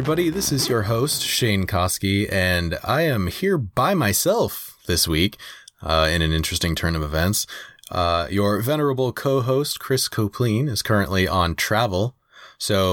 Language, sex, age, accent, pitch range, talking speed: English, male, 30-49, American, 90-115 Hz, 150 wpm